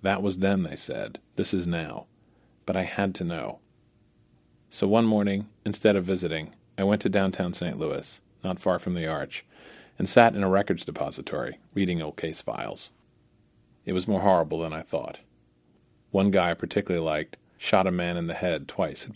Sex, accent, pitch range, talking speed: male, American, 85-105 Hz, 190 wpm